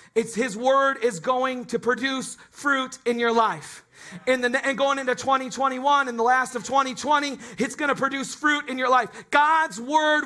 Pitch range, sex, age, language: 245-295 Hz, male, 40-59, English